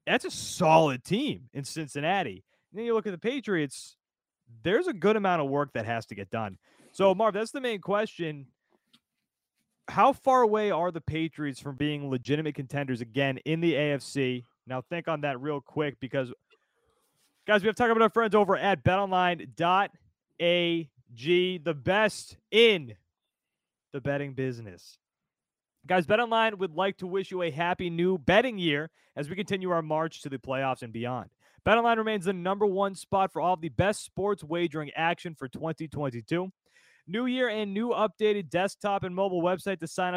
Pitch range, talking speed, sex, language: 145-200 Hz, 170 wpm, male, English